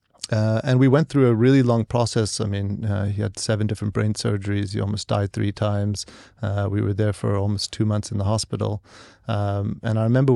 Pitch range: 100-115 Hz